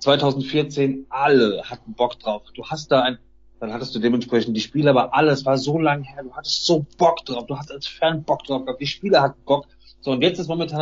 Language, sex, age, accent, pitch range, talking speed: German, male, 30-49, German, 135-165 Hz, 225 wpm